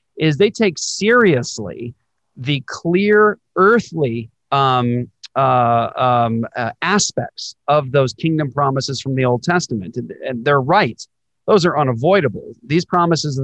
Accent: American